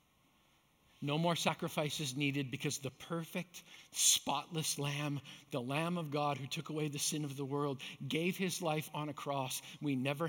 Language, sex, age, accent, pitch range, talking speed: English, male, 50-69, American, 140-170 Hz, 170 wpm